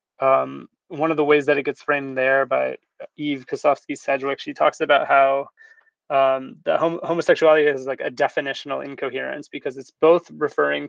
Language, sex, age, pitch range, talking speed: English, male, 20-39, 145-175 Hz, 165 wpm